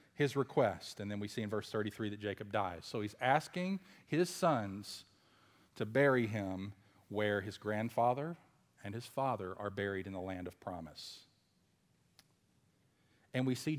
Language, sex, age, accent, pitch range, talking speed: English, male, 40-59, American, 100-120 Hz, 155 wpm